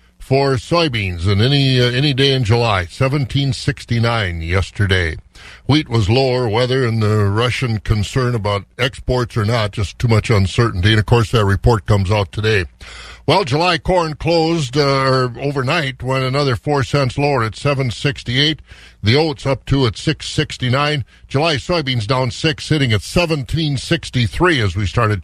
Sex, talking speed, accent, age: male, 150 wpm, American, 50-69